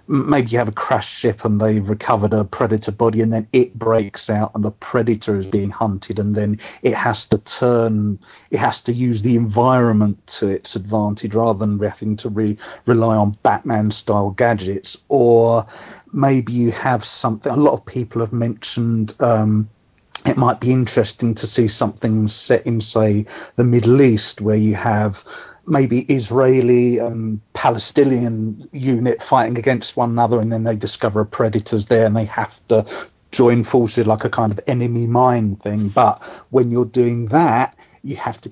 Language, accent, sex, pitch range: English, British, male, 105-120 Hz